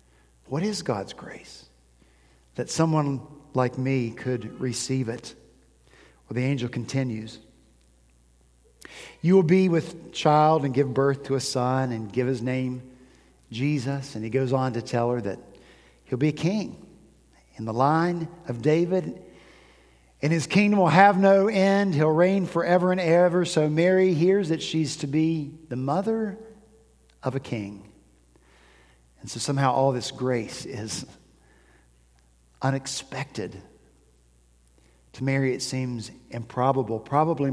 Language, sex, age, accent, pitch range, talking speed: English, male, 50-69, American, 95-155 Hz, 140 wpm